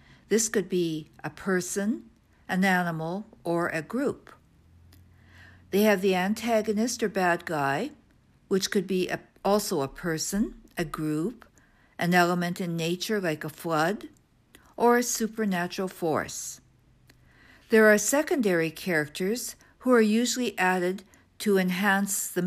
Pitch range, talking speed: 165-210 Hz, 125 wpm